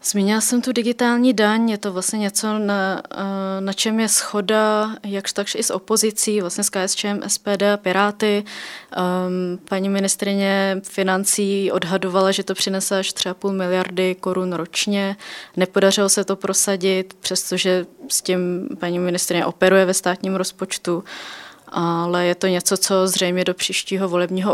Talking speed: 150 wpm